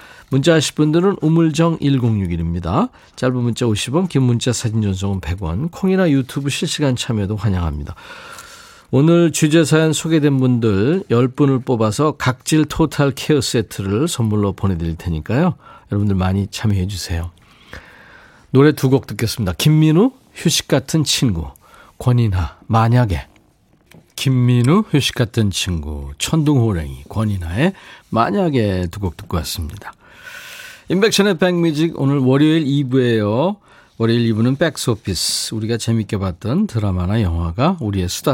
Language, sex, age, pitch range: Korean, male, 40-59, 100-160 Hz